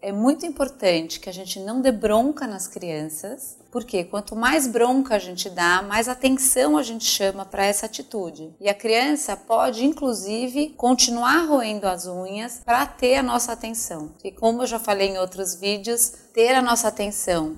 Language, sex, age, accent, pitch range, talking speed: Portuguese, female, 30-49, Brazilian, 195-235 Hz, 180 wpm